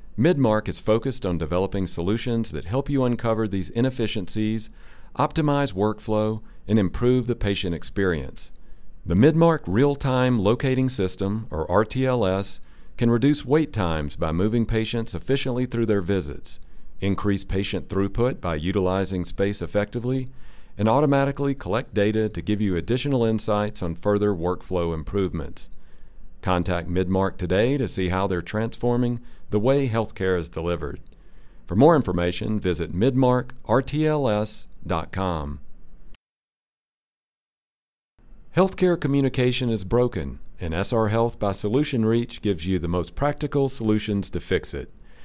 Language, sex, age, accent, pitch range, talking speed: English, male, 40-59, American, 90-125 Hz, 125 wpm